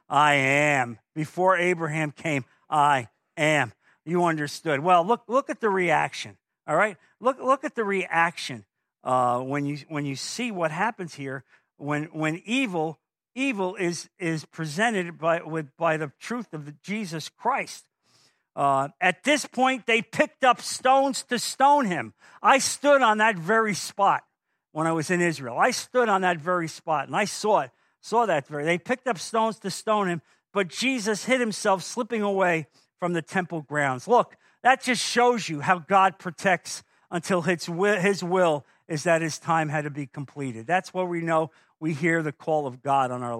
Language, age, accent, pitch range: English, 50-69, American, 155-215 Hz